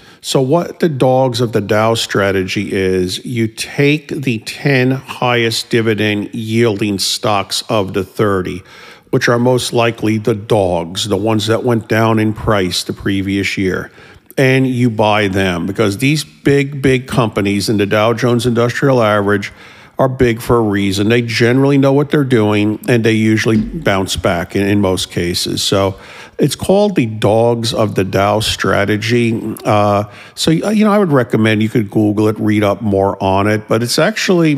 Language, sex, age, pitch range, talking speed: English, male, 50-69, 105-130 Hz, 170 wpm